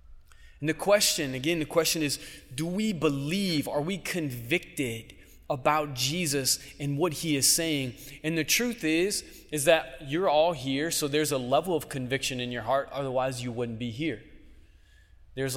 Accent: American